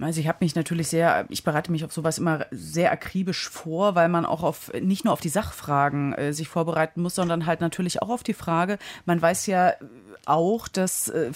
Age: 30-49